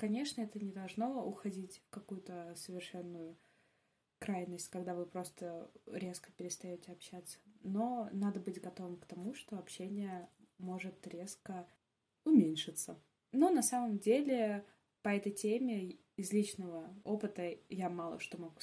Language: Russian